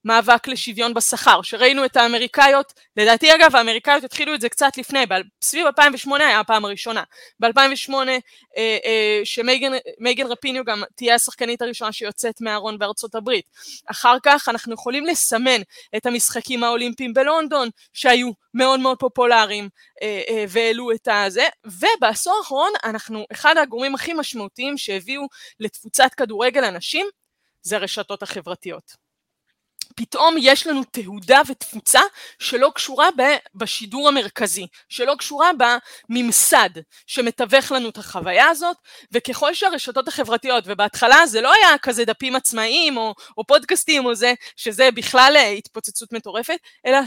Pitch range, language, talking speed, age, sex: 225-280 Hz, Hebrew, 125 wpm, 20-39, female